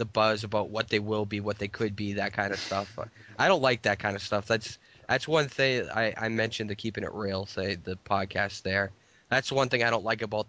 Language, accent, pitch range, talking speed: English, American, 105-120 Hz, 255 wpm